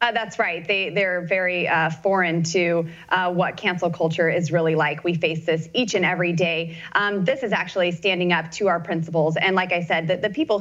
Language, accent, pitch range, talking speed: English, American, 175-225 Hz, 220 wpm